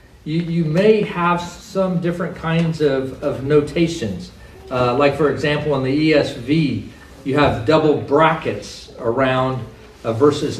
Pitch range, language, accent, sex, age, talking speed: 125-160 Hz, English, American, male, 50-69, 135 wpm